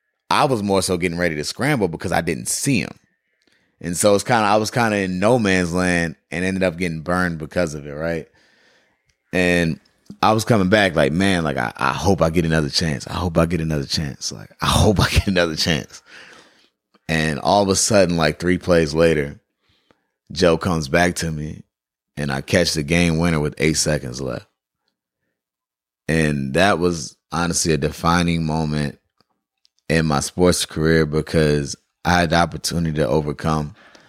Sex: male